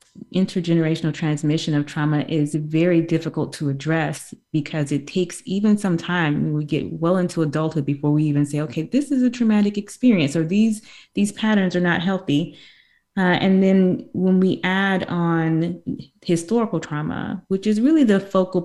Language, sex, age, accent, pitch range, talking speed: English, female, 20-39, American, 150-180 Hz, 165 wpm